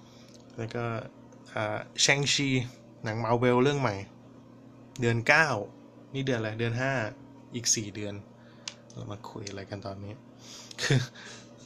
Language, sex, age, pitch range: Thai, male, 20-39, 110-125 Hz